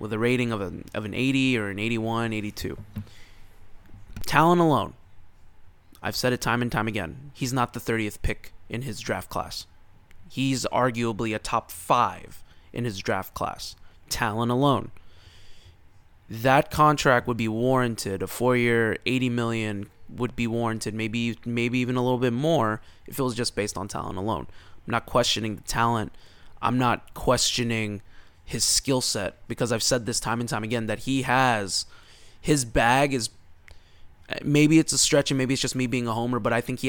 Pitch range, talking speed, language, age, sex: 100-125 Hz, 175 wpm, English, 20-39, male